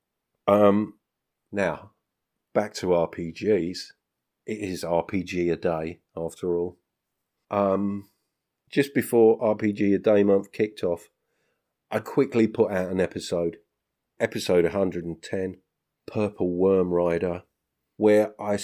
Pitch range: 85-105 Hz